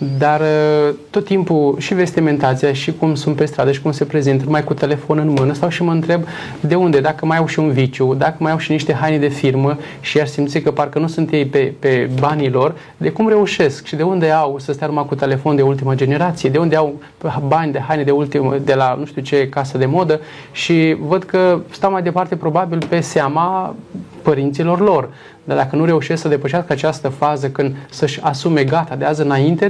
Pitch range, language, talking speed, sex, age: 140-165 Hz, Romanian, 220 wpm, male, 20-39